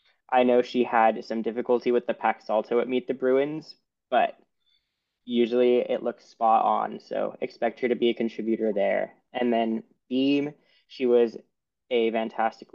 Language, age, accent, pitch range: English, 20-39, American, 115-125 Hz